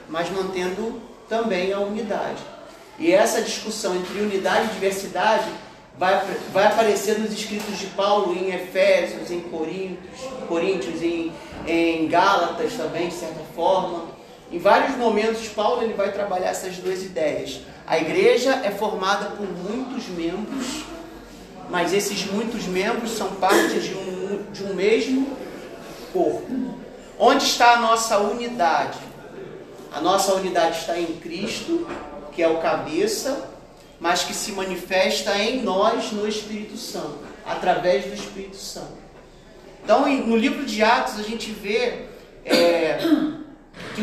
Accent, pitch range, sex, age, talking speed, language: Brazilian, 180-225 Hz, male, 40-59, 130 wpm, Portuguese